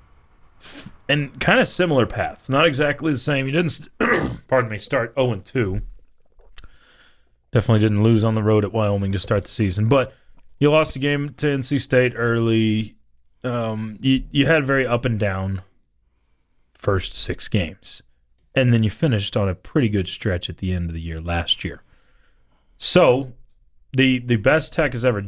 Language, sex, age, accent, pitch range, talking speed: English, male, 30-49, American, 95-130 Hz, 175 wpm